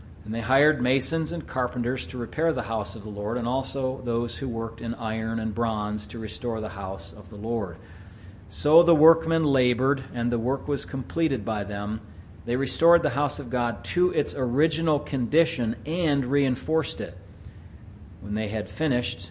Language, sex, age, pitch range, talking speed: English, male, 40-59, 100-130 Hz, 175 wpm